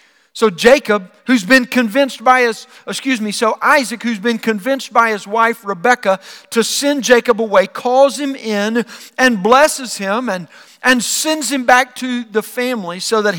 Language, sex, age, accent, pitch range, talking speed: English, male, 50-69, American, 220-275 Hz, 170 wpm